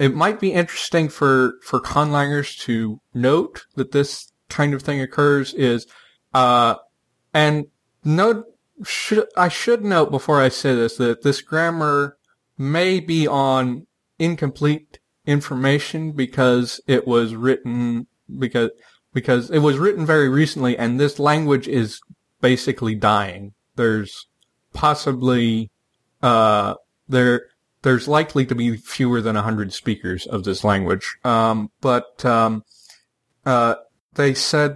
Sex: male